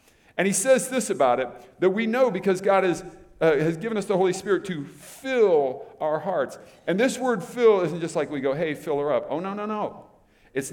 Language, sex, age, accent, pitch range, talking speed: English, male, 50-69, American, 165-240 Hz, 225 wpm